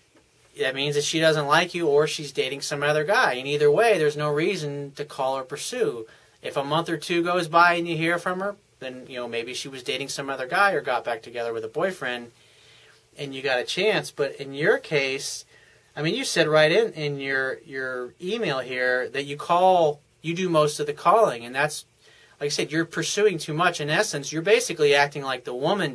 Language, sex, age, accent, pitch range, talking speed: English, male, 30-49, American, 135-175 Hz, 225 wpm